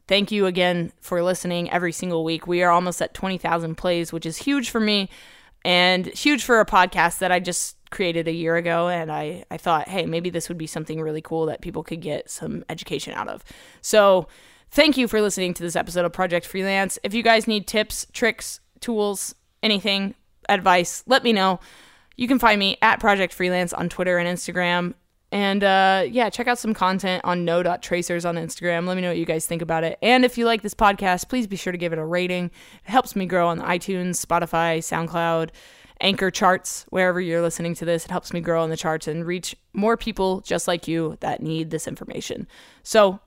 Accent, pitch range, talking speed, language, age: American, 170-200 Hz, 210 wpm, English, 20-39